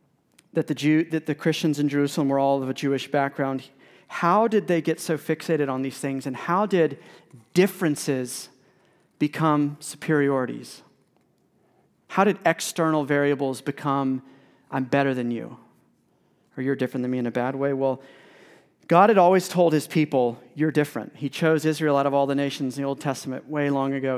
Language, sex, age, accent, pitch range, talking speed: English, male, 40-59, American, 140-165 Hz, 175 wpm